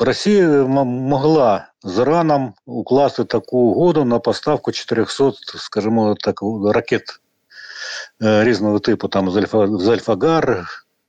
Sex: male